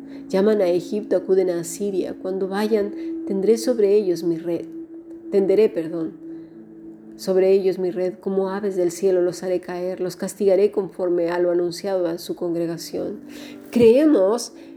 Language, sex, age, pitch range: Spanish, female, 40-59, 170-220 Hz